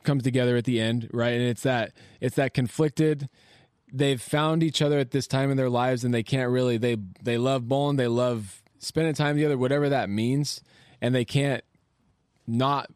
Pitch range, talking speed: 105-130 Hz, 195 wpm